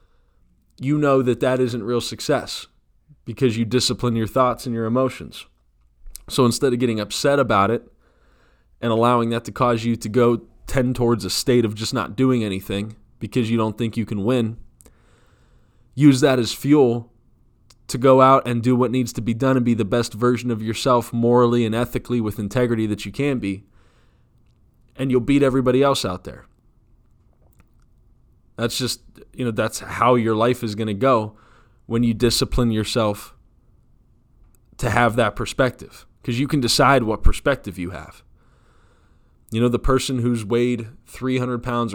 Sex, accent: male, American